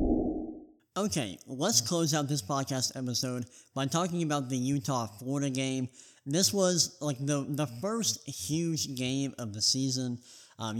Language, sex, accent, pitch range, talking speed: English, male, American, 130-155 Hz, 140 wpm